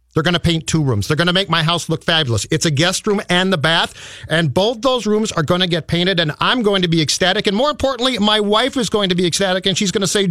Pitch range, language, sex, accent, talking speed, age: 155-195 Hz, English, male, American, 295 wpm, 40-59